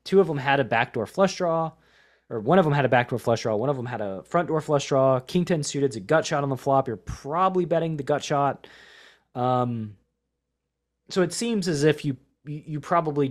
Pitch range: 95-145 Hz